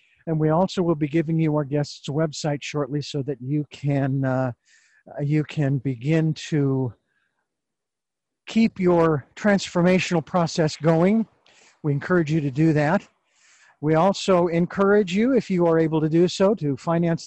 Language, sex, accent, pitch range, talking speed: English, male, American, 145-185 Hz, 155 wpm